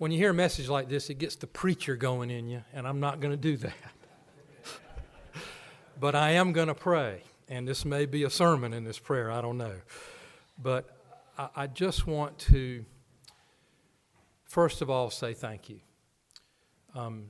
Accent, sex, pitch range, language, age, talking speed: American, male, 120-145 Hz, English, 50-69, 180 wpm